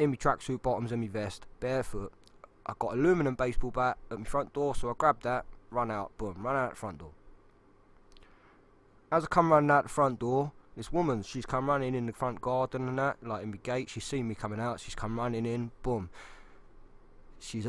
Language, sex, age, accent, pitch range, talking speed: English, male, 20-39, British, 105-140 Hz, 215 wpm